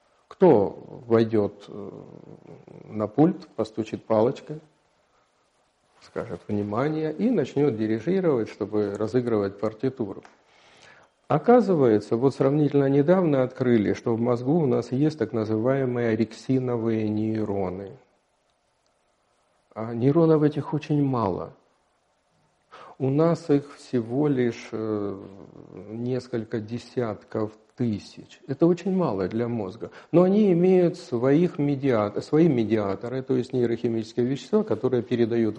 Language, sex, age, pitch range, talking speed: Russian, male, 50-69, 110-150 Hz, 100 wpm